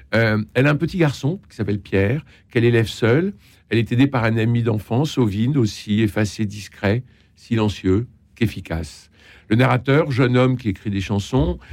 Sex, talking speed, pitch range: male, 170 wpm, 105-130 Hz